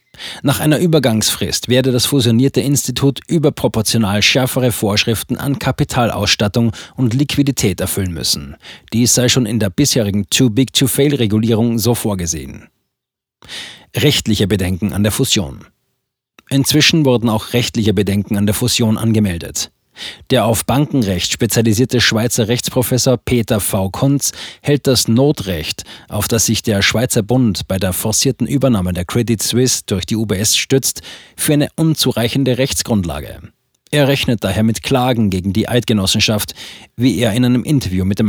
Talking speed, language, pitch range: 135 wpm, German, 105-130 Hz